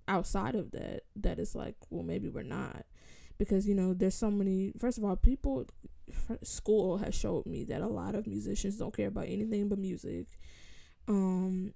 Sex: female